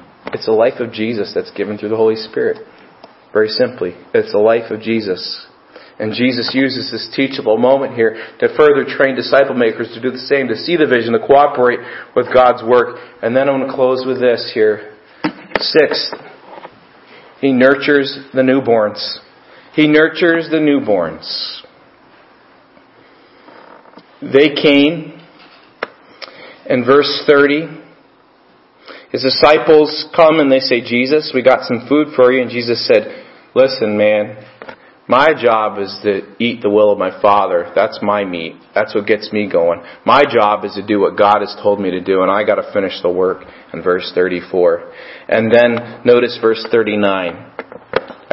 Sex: male